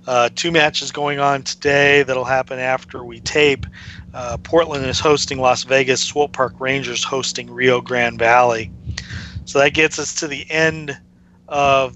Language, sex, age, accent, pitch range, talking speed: English, male, 40-59, American, 125-145 Hz, 165 wpm